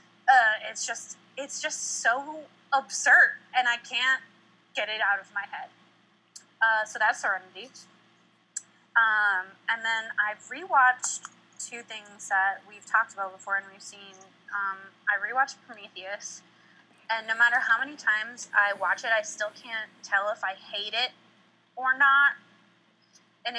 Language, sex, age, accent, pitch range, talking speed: English, female, 20-39, American, 200-240 Hz, 150 wpm